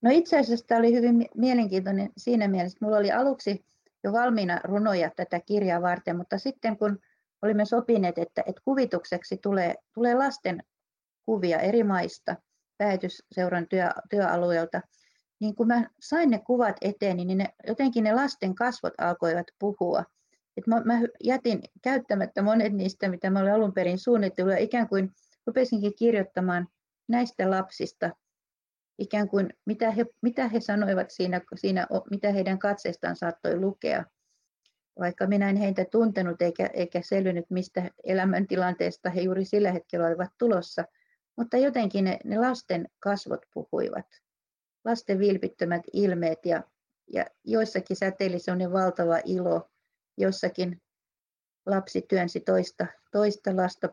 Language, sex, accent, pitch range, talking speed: Finnish, female, native, 180-225 Hz, 130 wpm